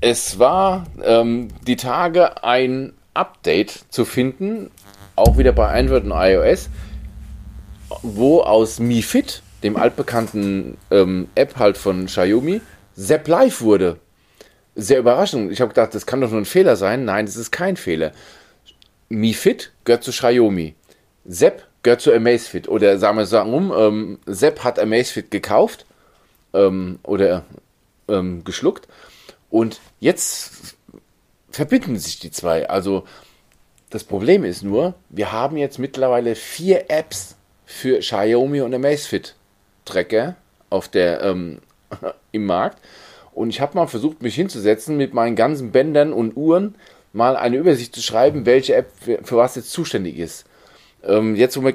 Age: 40-59